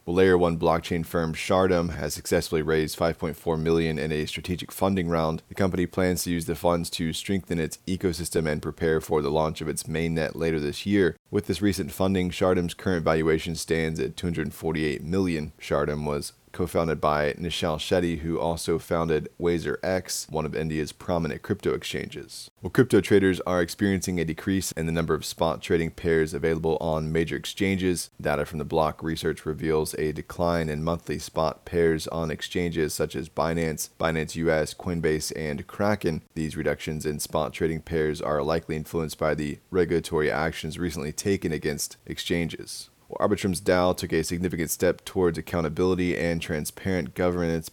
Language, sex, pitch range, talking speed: English, male, 80-90 Hz, 165 wpm